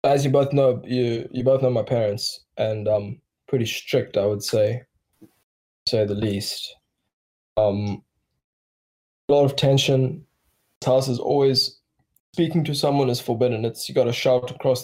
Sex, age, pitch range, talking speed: male, 10-29, 120-140 Hz, 165 wpm